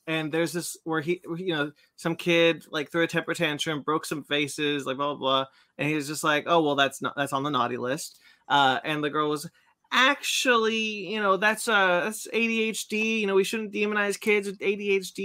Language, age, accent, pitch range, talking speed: English, 20-39, American, 140-195 Hz, 215 wpm